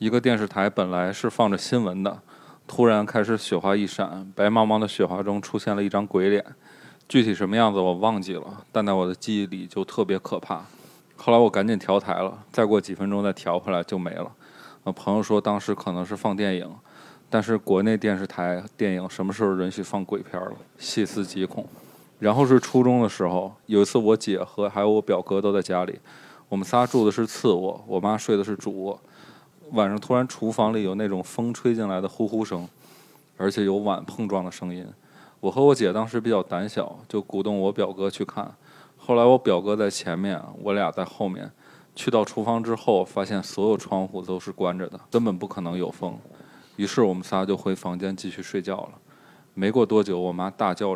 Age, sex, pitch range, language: 20-39, male, 95-110 Hz, Chinese